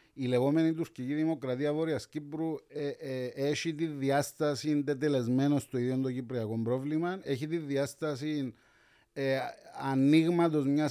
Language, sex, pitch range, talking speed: Greek, male, 130-180 Hz, 110 wpm